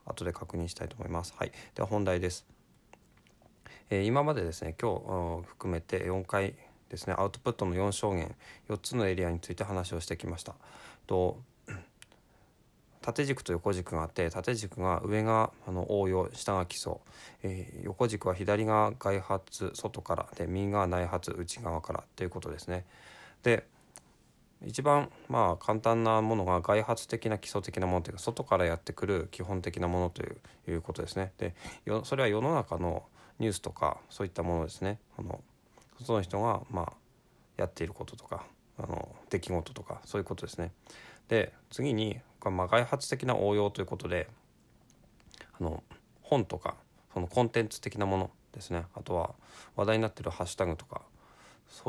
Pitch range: 90-110 Hz